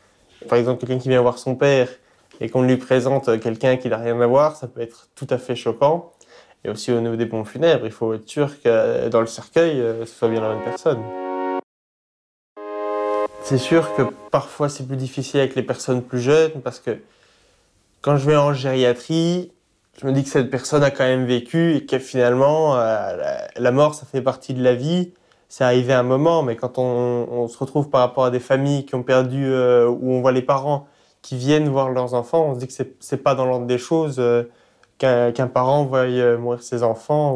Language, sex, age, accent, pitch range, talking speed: French, male, 20-39, French, 120-140 Hz, 215 wpm